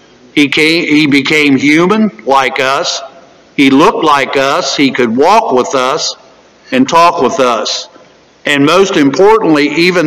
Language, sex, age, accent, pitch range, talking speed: English, male, 60-79, American, 140-190 Hz, 135 wpm